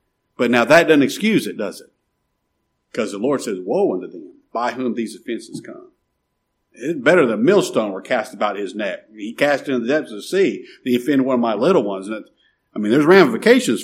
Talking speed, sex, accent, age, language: 210 wpm, male, American, 50-69, English